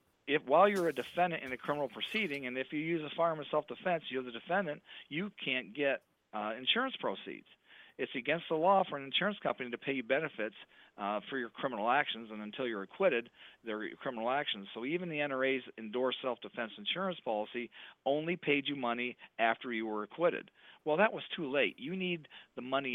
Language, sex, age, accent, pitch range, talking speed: English, male, 40-59, American, 120-150 Hz, 195 wpm